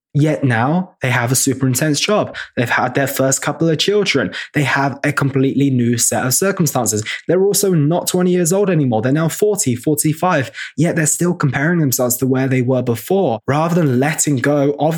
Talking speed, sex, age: 195 wpm, male, 20-39